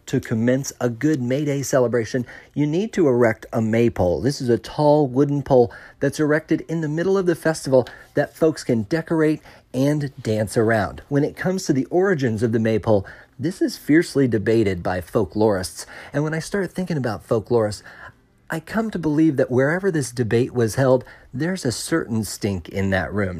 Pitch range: 115-145 Hz